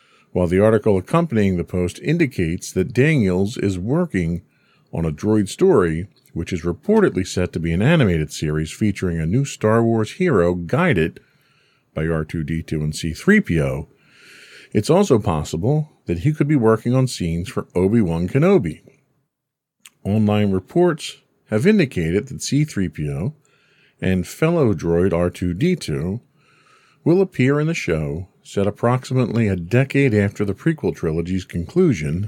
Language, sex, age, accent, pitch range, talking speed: English, male, 50-69, American, 85-135 Hz, 135 wpm